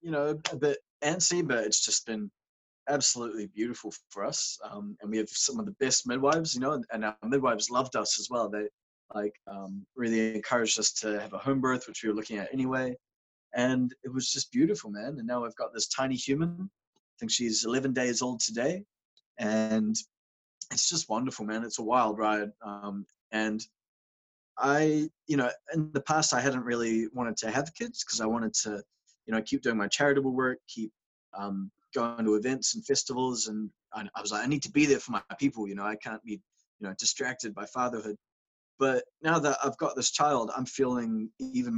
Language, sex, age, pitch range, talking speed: English, male, 20-39, 105-140 Hz, 205 wpm